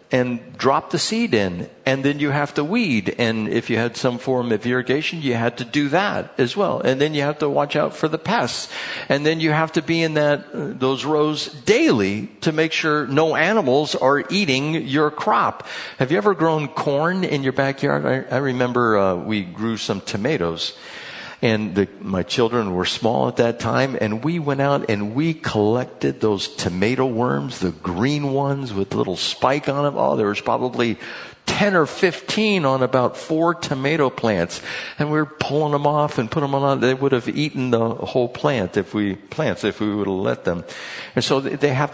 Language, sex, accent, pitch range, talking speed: English, male, American, 125-165 Hz, 200 wpm